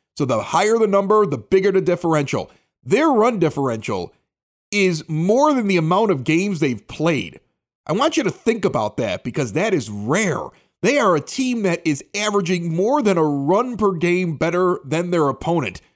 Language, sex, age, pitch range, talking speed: English, male, 30-49, 165-220 Hz, 185 wpm